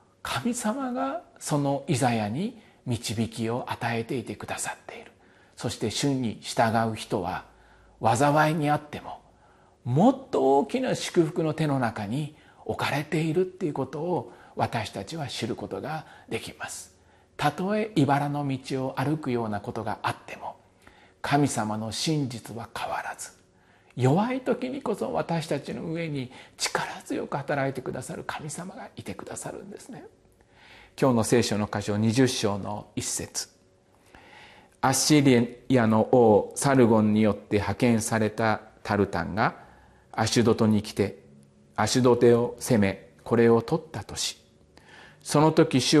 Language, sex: Japanese, male